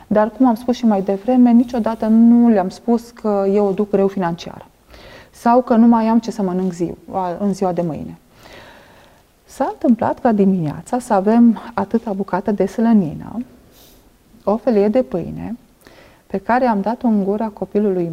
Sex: female